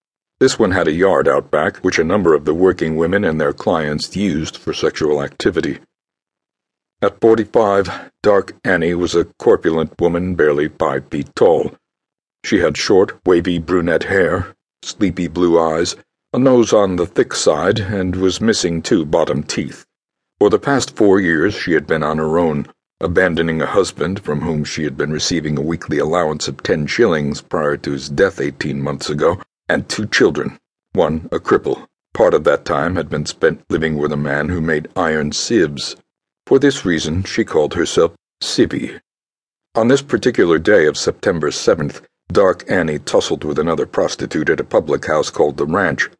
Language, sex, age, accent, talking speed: English, male, 60-79, American, 175 wpm